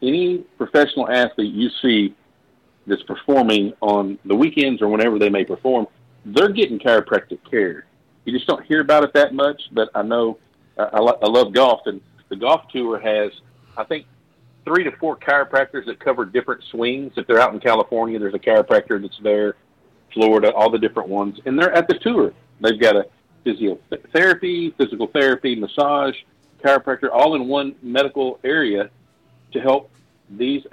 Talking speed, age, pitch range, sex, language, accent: 165 wpm, 50-69, 105-145 Hz, male, English, American